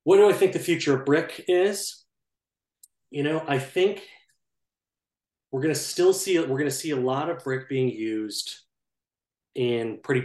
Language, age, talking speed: English, 30-49, 180 wpm